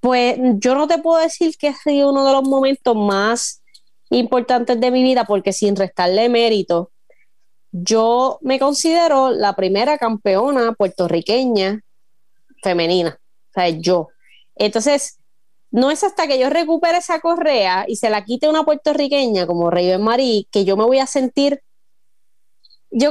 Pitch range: 200-265 Hz